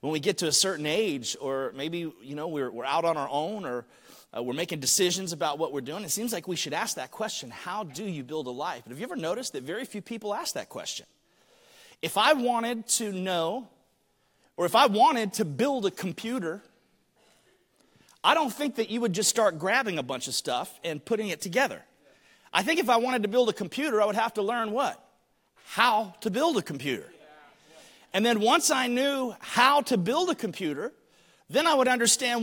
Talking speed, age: 215 wpm, 30-49